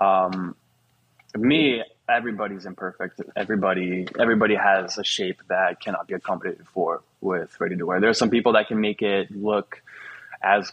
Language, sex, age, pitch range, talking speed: English, male, 20-39, 95-110 Hz, 155 wpm